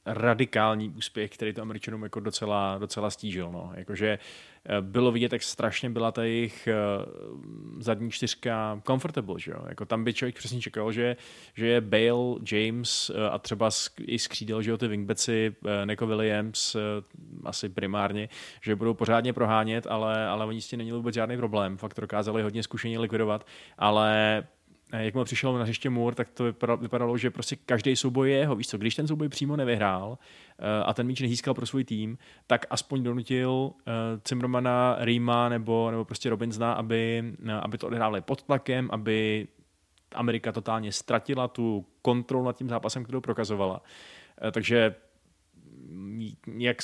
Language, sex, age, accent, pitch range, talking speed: Czech, male, 20-39, native, 110-120 Hz, 155 wpm